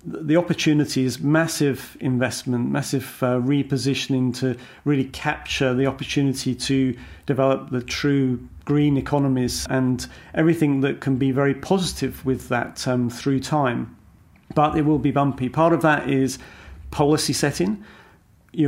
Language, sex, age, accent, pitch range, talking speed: English, male, 40-59, British, 130-150 Hz, 140 wpm